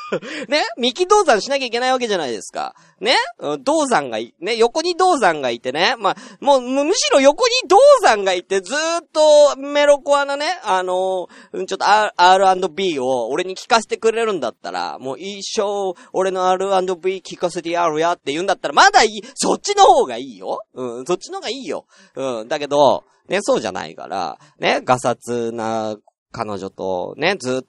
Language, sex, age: Japanese, male, 40-59